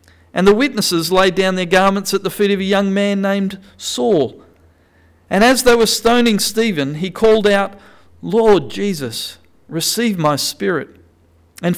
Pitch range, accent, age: 120-195 Hz, Australian, 40-59